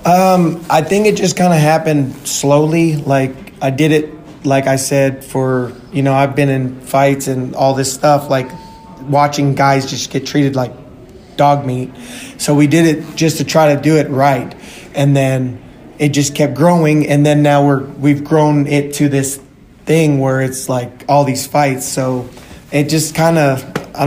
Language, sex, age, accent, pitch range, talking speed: English, male, 20-39, American, 135-155 Hz, 185 wpm